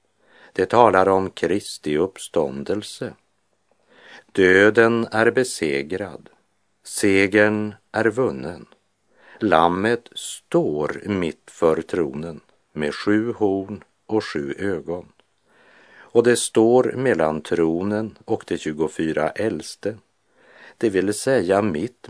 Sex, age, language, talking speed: male, 50-69, Swedish, 95 wpm